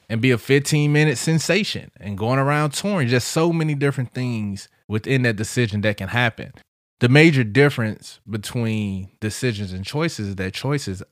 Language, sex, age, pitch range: English, male, 20-39, 105-135 Hz